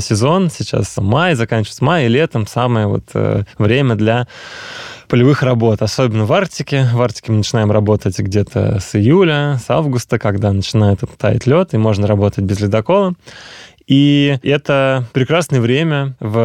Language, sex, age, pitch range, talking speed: Russian, male, 20-39, 110-140 Hz, 150 wpm